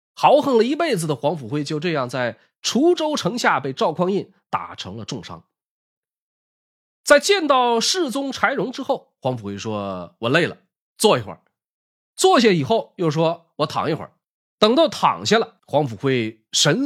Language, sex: Chinese, male